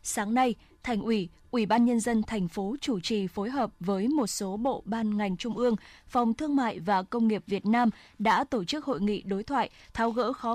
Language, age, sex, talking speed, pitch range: Vietnamese, 20-39, female, 230 wpm, 210-260 Hz